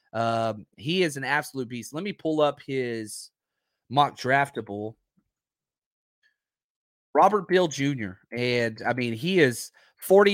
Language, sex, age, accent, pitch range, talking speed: English, male, 30-49, American, 130-175 Hz, 130 wpm